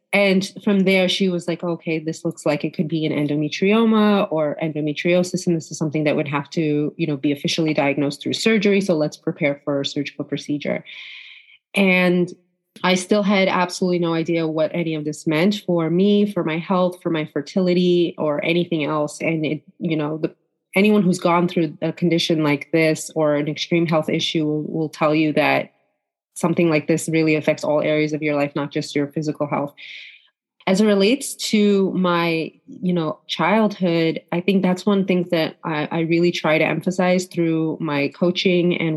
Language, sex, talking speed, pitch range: English, female, 190 wpm, 155-180 Hz